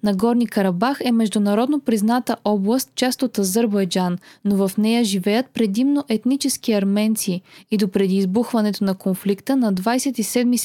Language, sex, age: Bulgarian, female, 20-39